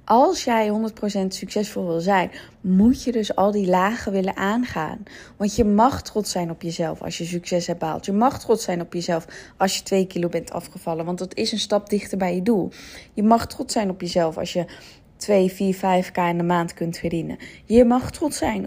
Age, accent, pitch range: 20-39, Dutch, 180-225 Hz